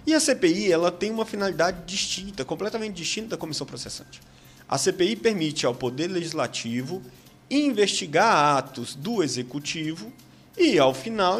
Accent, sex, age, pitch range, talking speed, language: Brazilian, male, 30-49, 130-205 Hz, 130 wpm, Portuguese